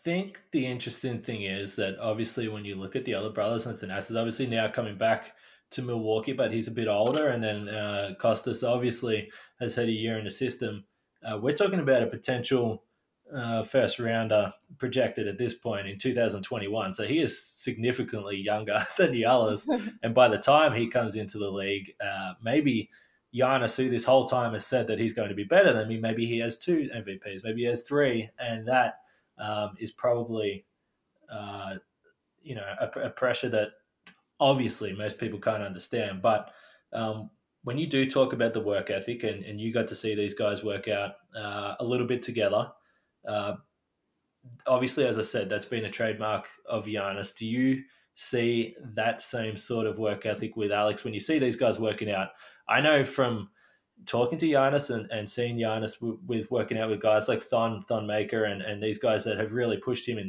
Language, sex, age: English, male, 20-39